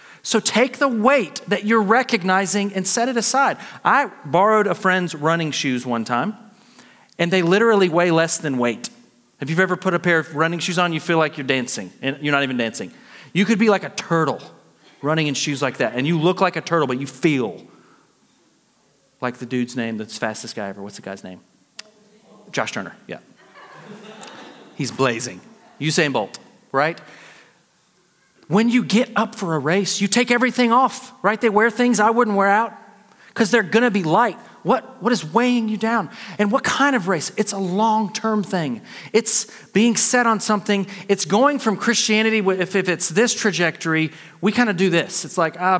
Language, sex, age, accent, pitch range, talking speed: English, male, 40-59, American, 160-220 Hz, 190 wpm